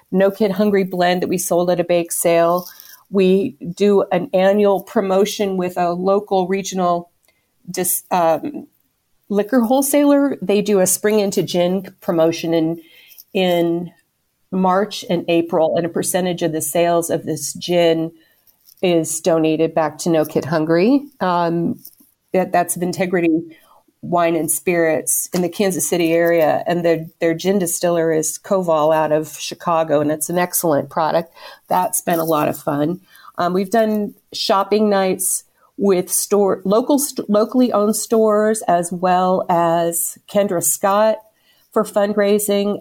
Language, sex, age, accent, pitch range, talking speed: English, female, 40-59, American, 170-205 Hz, 145 wpm